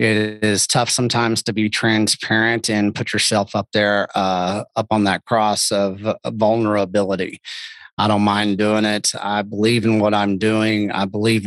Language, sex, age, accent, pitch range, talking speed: English, male, 30-49, American, 105-115 Hz, 165 wpm